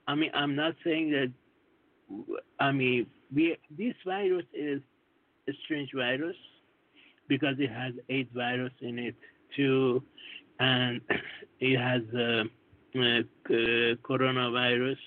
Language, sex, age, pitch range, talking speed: English, male, 60-79, 125-165 Hz, 115 wpm